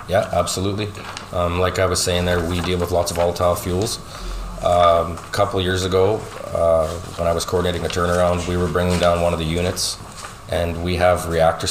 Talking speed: 200 wpm